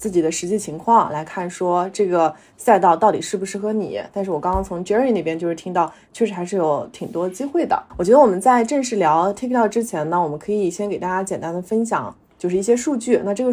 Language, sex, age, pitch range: Chinese, female, 20-39, 175-230 Hz